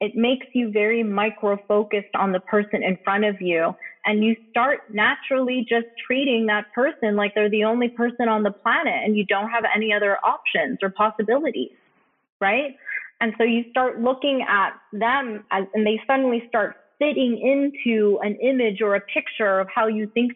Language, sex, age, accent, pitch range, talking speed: English, female, 20-39, American, 200-240 Hz, 175 wpm